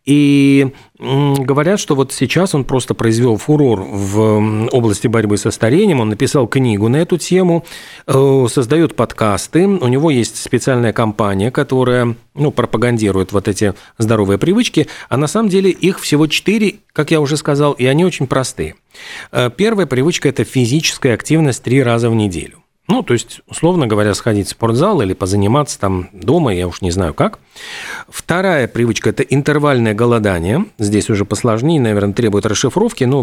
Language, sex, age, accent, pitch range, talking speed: Russian, male, 40-59, native, 110-150 Hz, 160 wpm